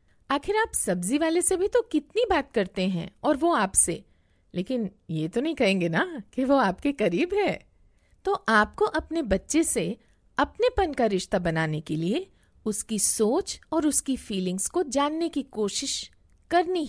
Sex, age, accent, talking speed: female, 50-69, native, 165 wpm